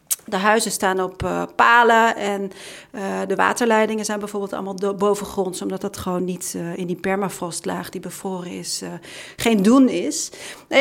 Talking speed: 170 wpm